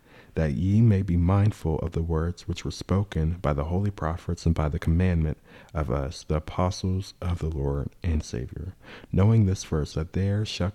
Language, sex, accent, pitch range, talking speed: English, male, American, 80-95 Hz, 190 wpm